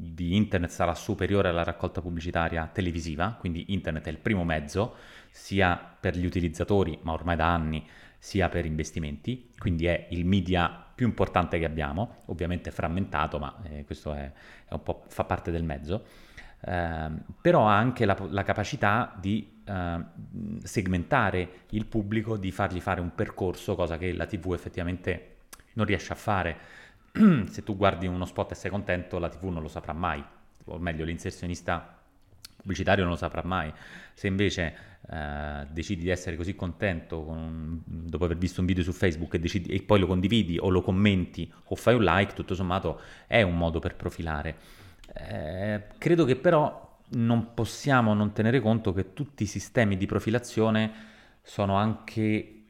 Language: Italian